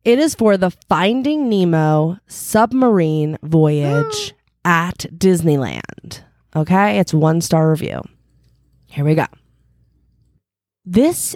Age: 20-39